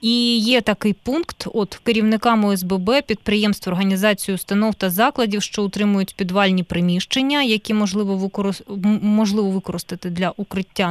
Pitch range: 180-215 Hz